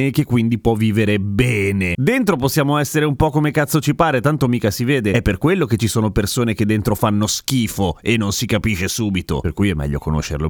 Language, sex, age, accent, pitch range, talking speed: Italian, male, 30-49, native, 105-155 Hz, 230 wpm